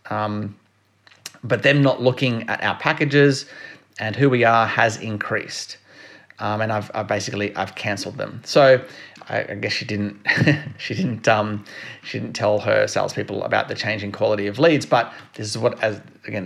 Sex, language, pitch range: male, English, 110-140 Hz